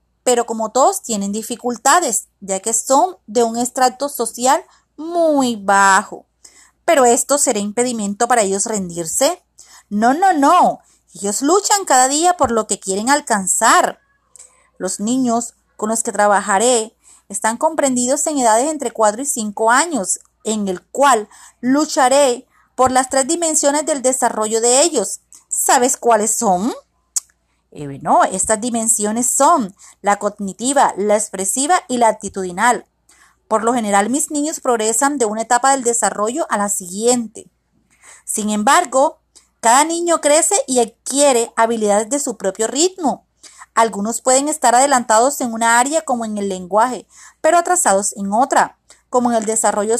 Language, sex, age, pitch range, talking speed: Spanish, female, 30-49, 215-275 Hz, 145 wpm